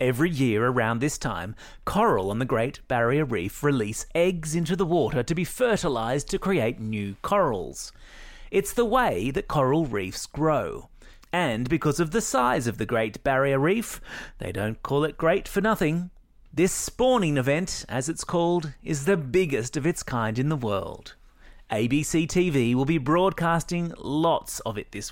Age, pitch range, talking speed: 30-49, 120-185 Hz, 170 wpm